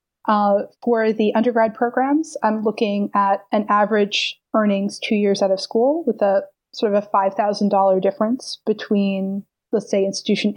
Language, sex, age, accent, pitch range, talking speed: English, female, 30-49, American, 200-235 Hz, 155 wpm